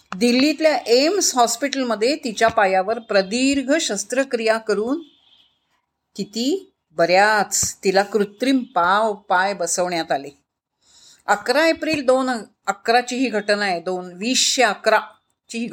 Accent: native